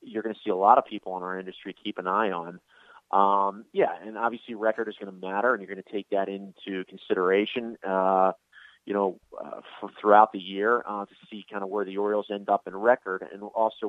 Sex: male